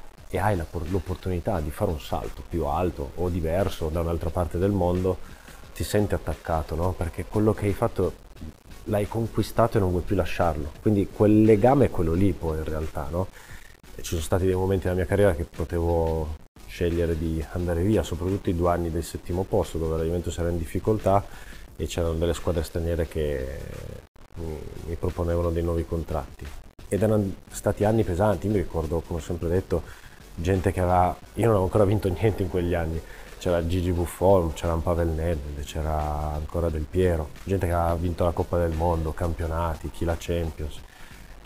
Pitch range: 85-100 Hz